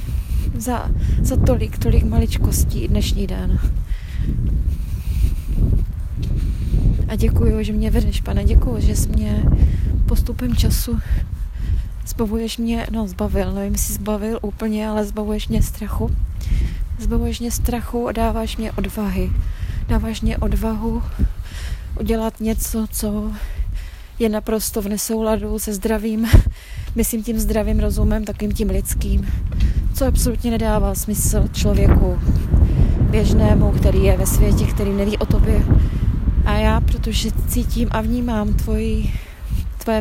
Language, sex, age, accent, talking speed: Czech, female, 20-39, native, 120 wpm